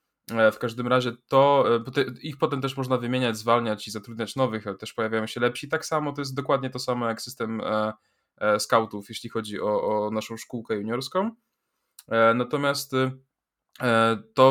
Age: 20-39